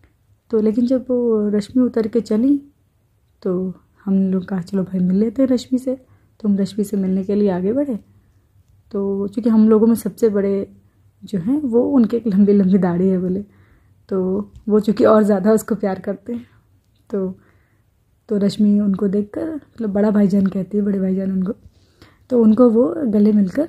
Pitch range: 185-235 Hz